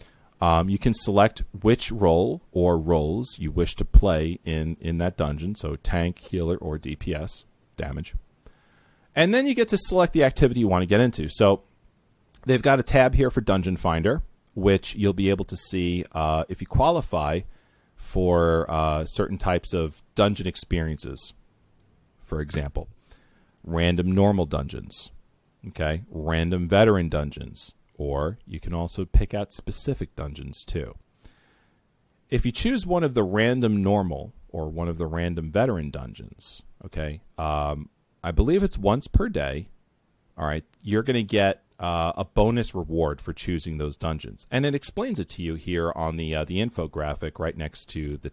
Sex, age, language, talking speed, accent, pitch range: male, 40-59, English, 165 wpm, American, 80-105 Hz